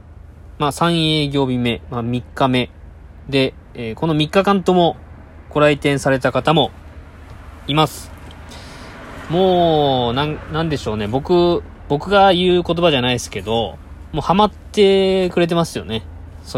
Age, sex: 20-39, male